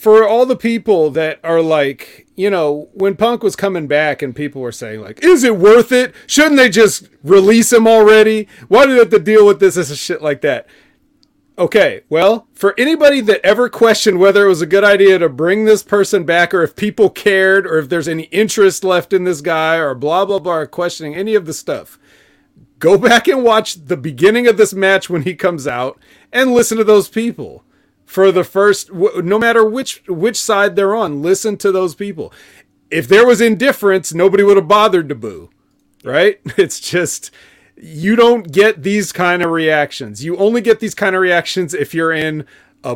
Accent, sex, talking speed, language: American, male, 205 wpm, English